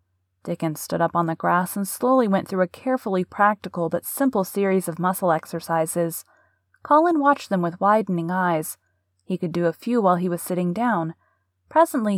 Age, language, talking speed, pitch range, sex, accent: 30-49, English, 175 wpm, 170-205 Hz, female, American